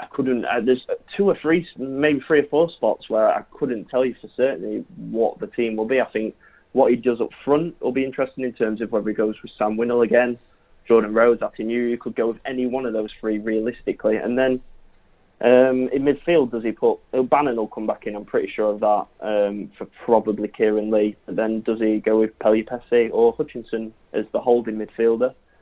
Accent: British